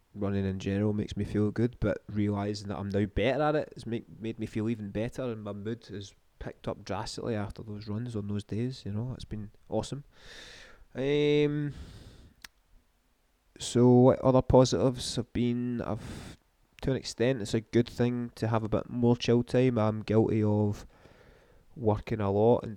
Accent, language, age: British, English, 20-39